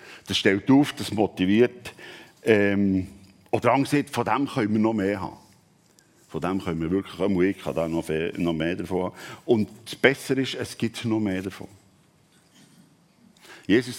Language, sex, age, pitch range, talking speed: German, male, 50-69, 105-135 Hz, 165 wpm